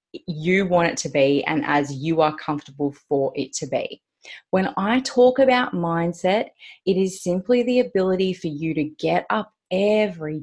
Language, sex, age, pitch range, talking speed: English, female, 30-49, 150-200 Hz, 175 wpm